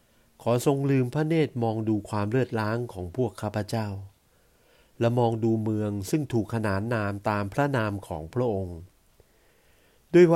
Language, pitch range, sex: Thai, 95-125 Hz, male